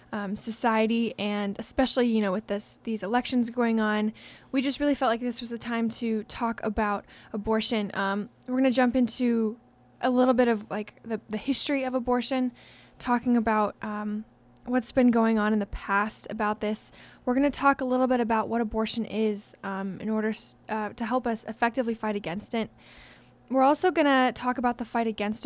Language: English